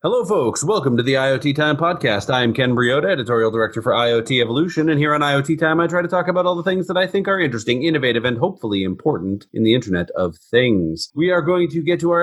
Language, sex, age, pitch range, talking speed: English, male, 30-49, 125-165 Hz, 250 wpm